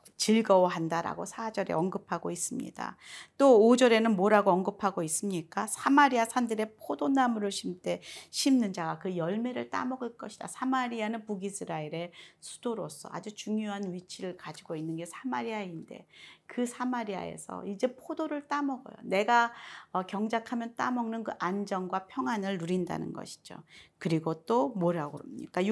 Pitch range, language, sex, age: 170-230 Hz, Korean, female, 40-59